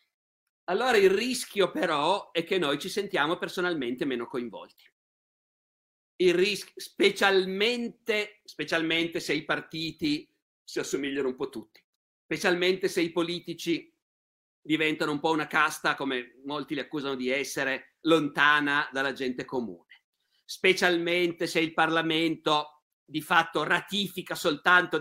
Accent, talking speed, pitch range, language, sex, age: native, 120 wpm, 155-215 Hz, Italian, male, 50-69